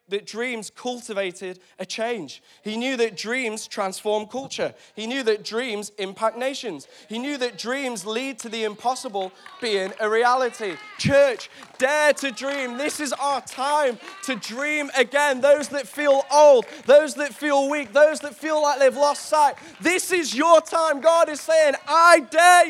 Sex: male